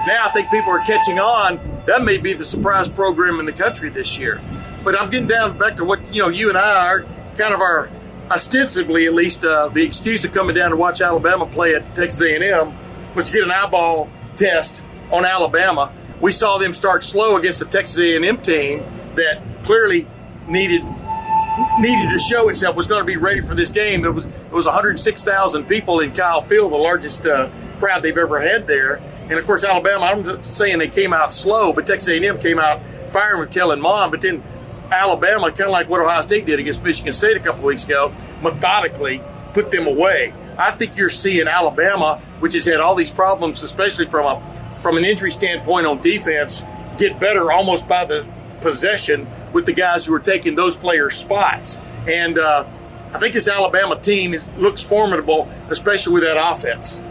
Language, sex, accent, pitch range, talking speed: English, male, American, 165-220 Hz, 200 wpm